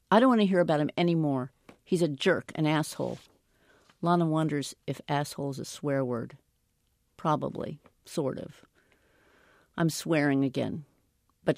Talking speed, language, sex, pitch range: 145 wpm, English, female, 145-195 Hz